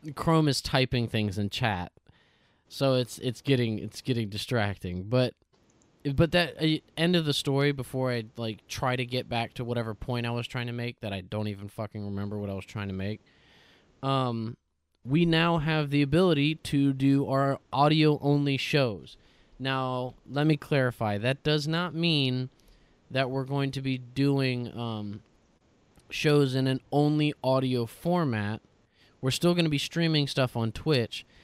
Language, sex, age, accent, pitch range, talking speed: English, male, 20-39, American, 115-140 Hz, 170 wpm